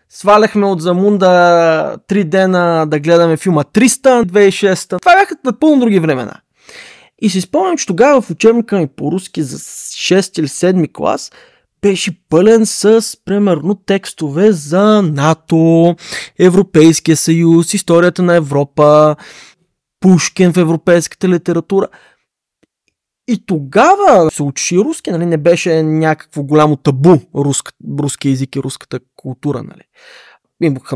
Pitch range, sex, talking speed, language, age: 150-200 Hz, male, 125 wpm, Bulgarian, 20-39